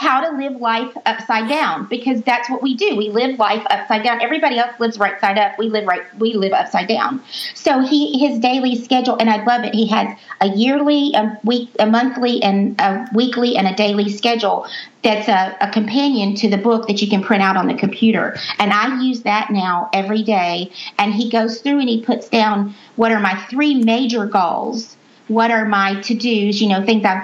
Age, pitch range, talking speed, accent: 40-59, 200-235 Hz, 215 wpm, American